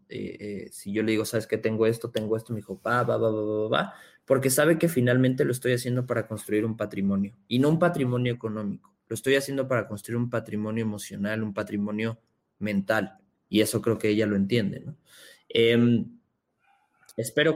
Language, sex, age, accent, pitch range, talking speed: Spanish, male, 20-39, Mexican, 110-130 Hz, 195 wpm